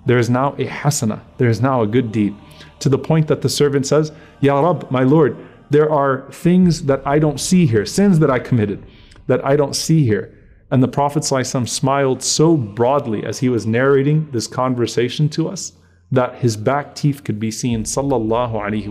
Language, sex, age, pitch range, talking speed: English, male, 30-49, 125-175 Hz, 195 wpm